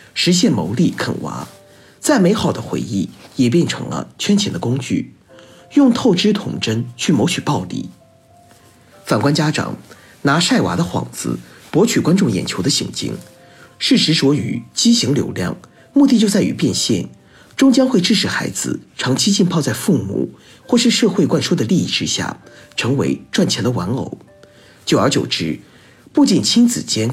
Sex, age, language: male, 50-69, Chinese